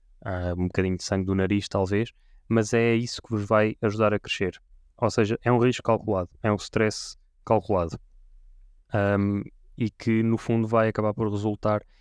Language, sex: Portuguese, male